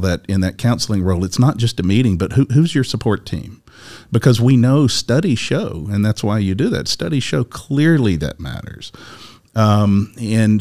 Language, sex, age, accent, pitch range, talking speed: English, male, 40-59, American, 95-120 Hz, 190 wpm